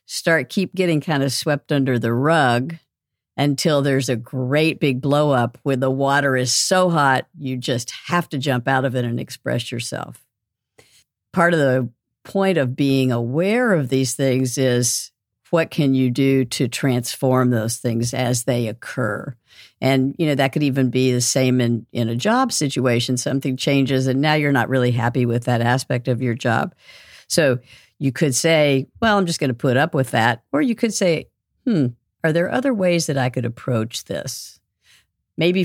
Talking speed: 185 wpm